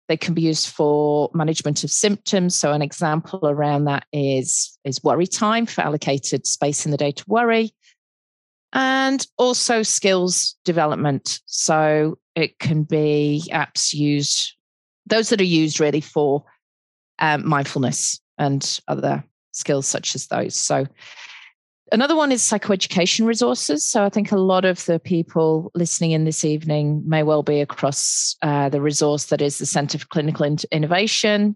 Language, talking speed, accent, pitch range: English, 155 wpm, British, 145-185 Hz